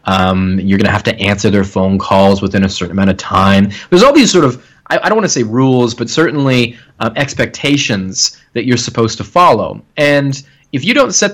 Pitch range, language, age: 100-140 Hz, English, 30-49